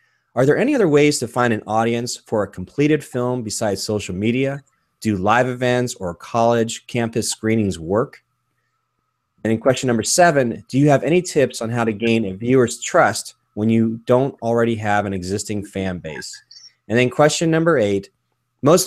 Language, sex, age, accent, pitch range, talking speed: English, male, 20-39, American, 105-135 Hz, 180 wpm